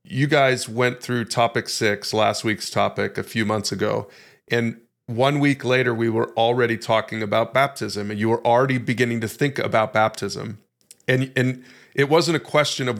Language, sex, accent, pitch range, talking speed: English, male, American, 115-130 Hz, 180 wpm